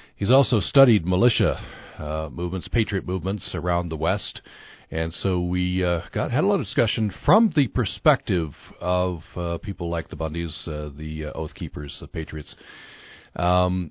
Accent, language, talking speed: American, English, 165 wpm